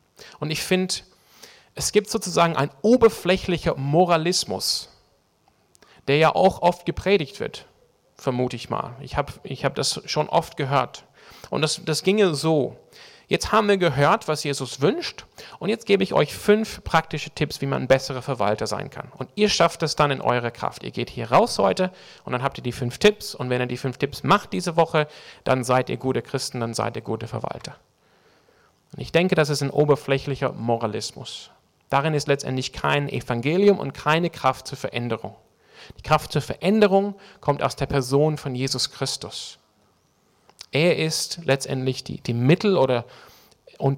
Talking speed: 175 wpm